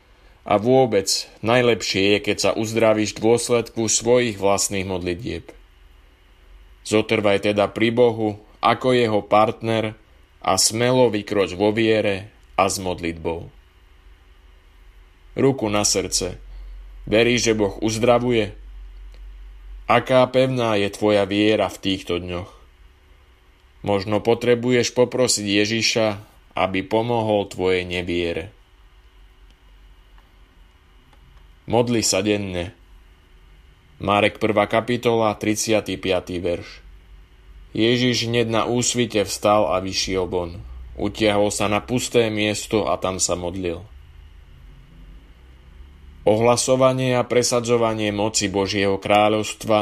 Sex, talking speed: male, 95 wpm